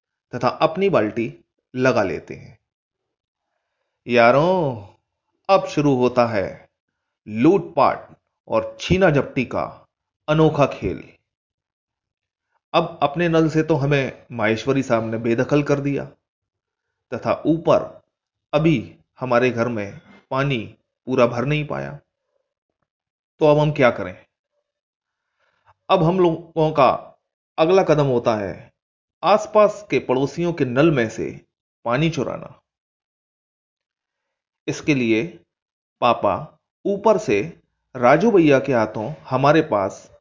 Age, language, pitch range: 30-49, Hindi, 125-190 Hz